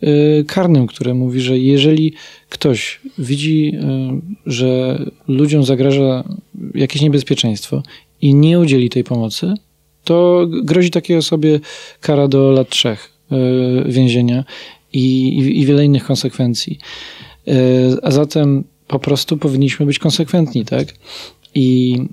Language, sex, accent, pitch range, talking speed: Polish, male, native, 130-150 Hz, 110 wpm